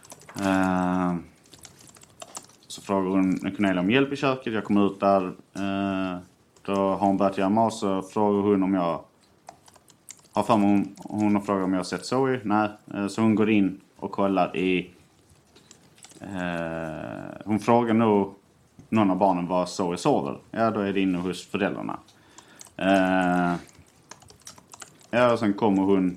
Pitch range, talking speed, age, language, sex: 90-100 Hz, 155 wpm, 30-49, Swedish, male